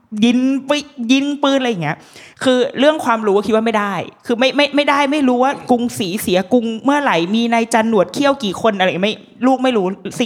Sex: female